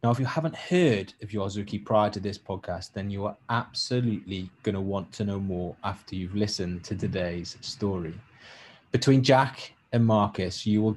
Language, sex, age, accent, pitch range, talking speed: English, male, 20-39, British, 100-120 Hz, 180 wpm